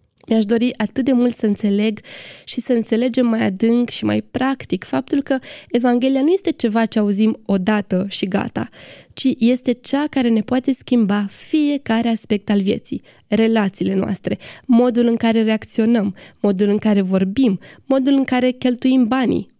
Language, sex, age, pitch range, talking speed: Romanian, female, 20-39, 215-255 Hz, 160 wpm